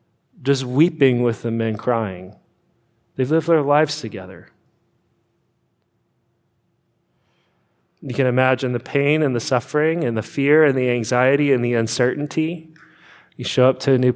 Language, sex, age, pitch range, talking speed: English, male, 30-49, 115-150 Hz, 145 wpm